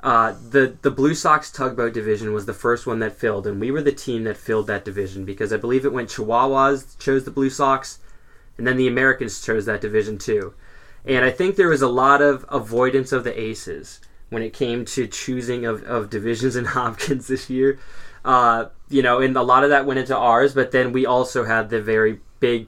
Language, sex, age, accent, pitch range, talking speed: English, male, 20-39, American, 110-135 Hz, 220 wpm